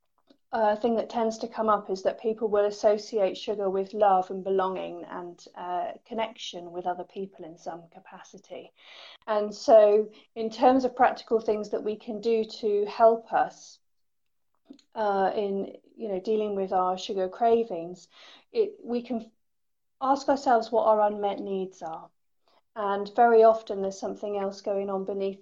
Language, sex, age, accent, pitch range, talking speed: English, female, 40-59, British, 190-225 Hz, 160 wpm